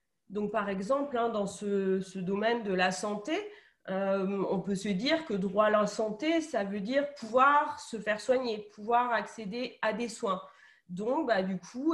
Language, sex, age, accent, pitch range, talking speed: French, female, 30-49, French, 185-225 Hz, 180 wpm